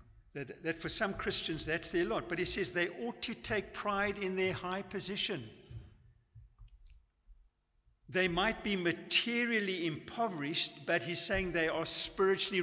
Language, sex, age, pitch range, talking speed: English, male, 60-79, 125-190 Hz, 145 wpm